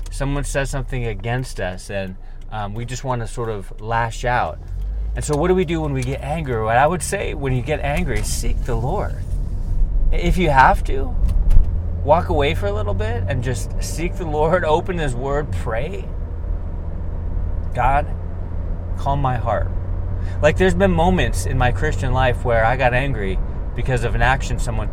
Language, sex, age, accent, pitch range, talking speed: English, male, 30-49, American, 90-125 Hz, 180 wpm